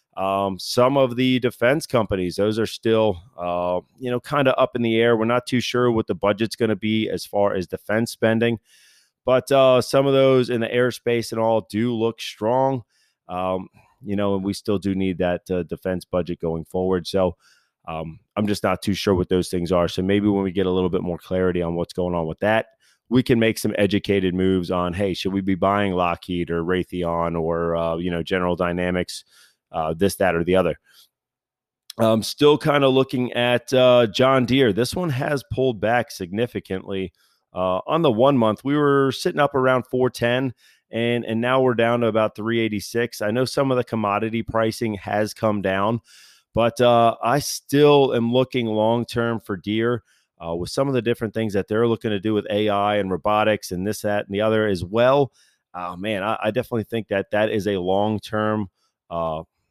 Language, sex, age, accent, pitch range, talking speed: English, male, 30-49, American, 95-120 Hz, 205 wpm